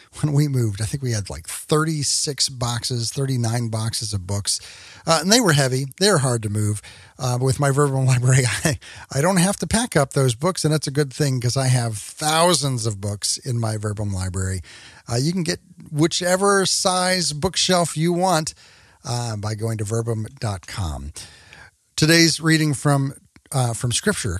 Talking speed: 175 wpm